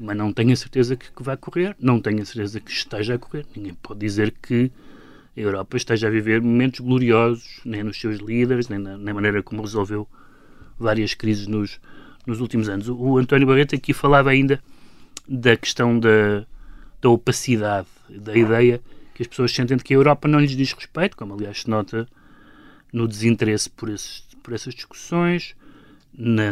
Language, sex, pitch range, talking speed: Portuguese, male, 110-135 Hz, 180 wpm